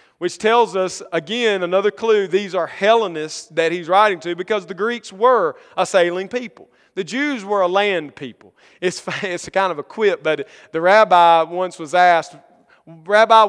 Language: English